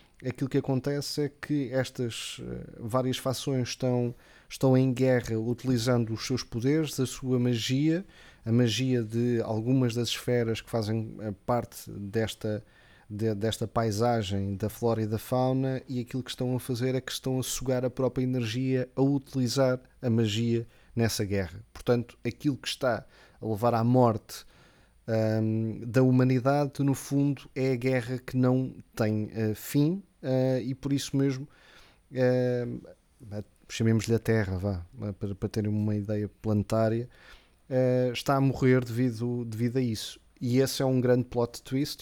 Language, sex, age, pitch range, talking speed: Portuguese, male, 20-39, 110-130 Hz, 150 wpm